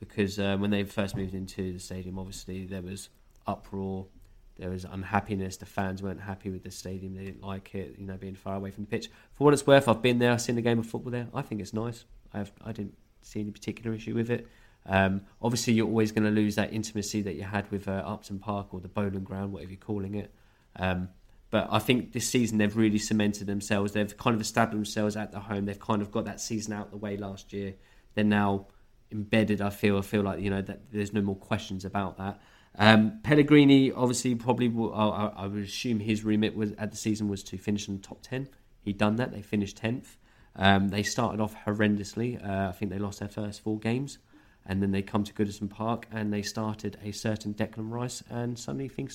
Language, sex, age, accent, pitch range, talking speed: English, male, 20-39, British, 100-115 Hz, 235 wpm